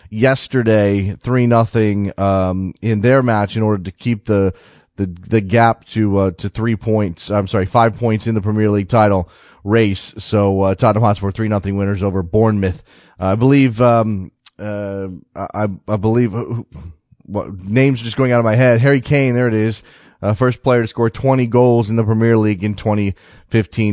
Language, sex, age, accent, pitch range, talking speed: English, male, 30-49, American, 100-120 Hz, 185 wpm